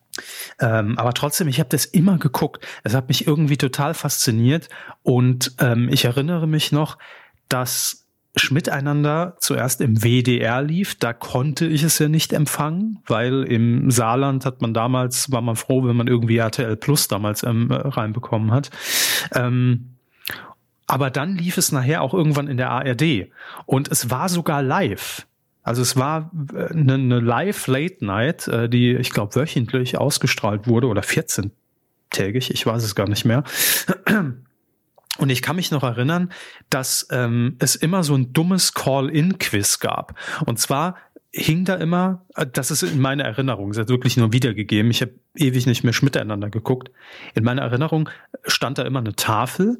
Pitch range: 120-155 Hz